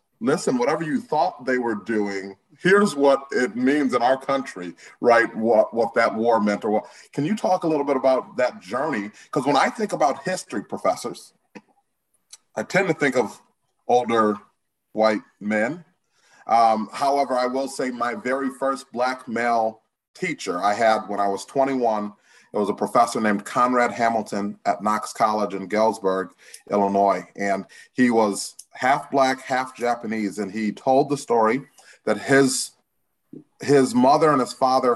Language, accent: English, American